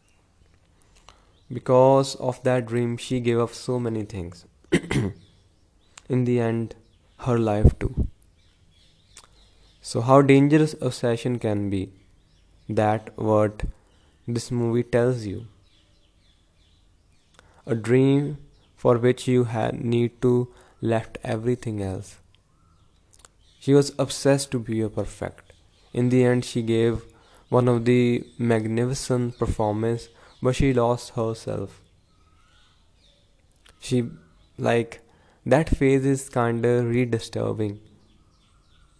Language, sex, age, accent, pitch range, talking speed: English, male, 20-39, Indian, 95-125 Hz, 105 wpm